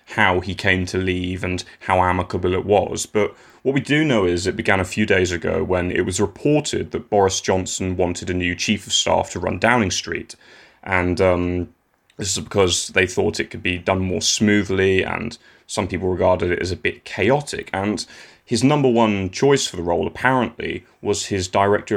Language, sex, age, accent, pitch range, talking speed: English, male, 20-39, British, 90-110 Hz, 200 wpm